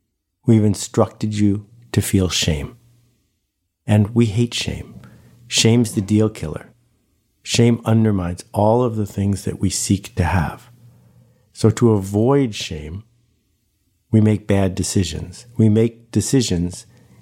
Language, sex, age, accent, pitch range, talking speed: English, male, 50-69, American, 95-120 Hz, 125 wpm